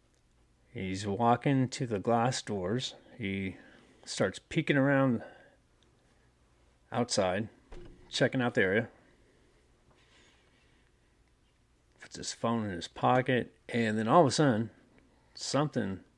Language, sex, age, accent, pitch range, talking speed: English, male, 40-59, American, 95-130 Hz, 105 wpm